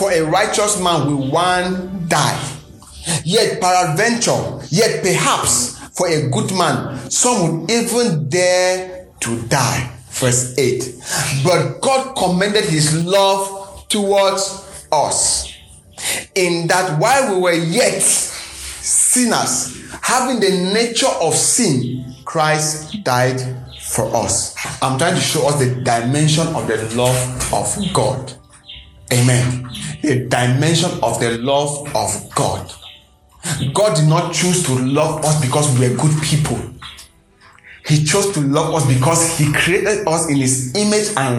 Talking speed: 130 wpm